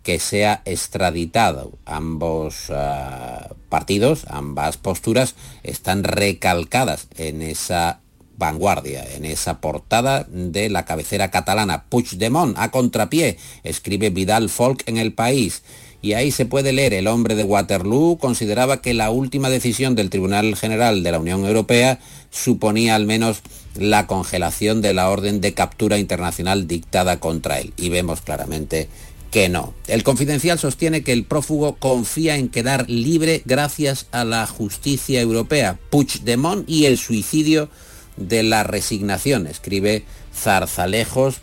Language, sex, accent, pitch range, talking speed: Spanish, male, Spanish, 90-125 Hz, 135 wpm